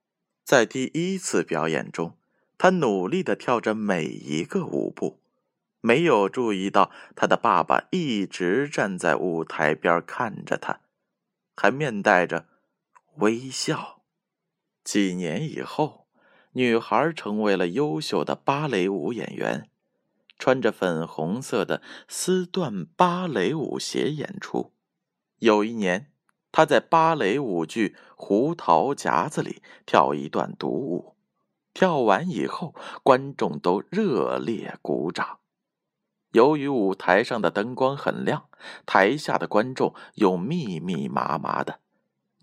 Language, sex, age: Chinese, male, 20-39